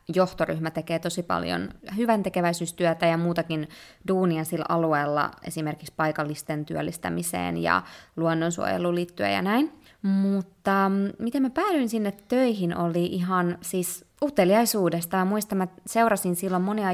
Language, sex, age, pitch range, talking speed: Finnish, female, 20-39, 165-195 Hz, 120 wpm